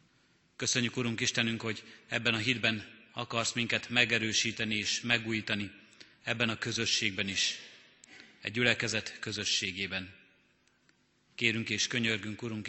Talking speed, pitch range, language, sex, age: 105 wpm, 105-120 Hz, Hungarian, male, 30-49